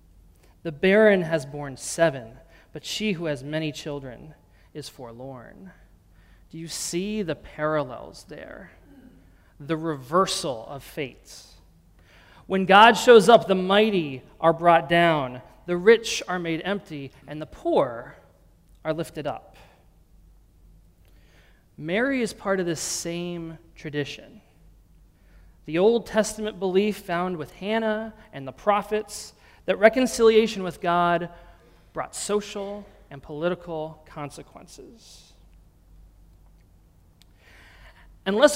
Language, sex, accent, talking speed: English, male, American, 110 wpm